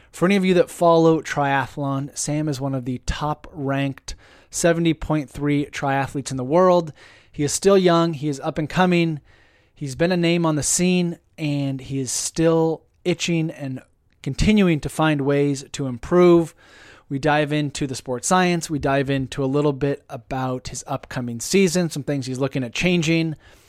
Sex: male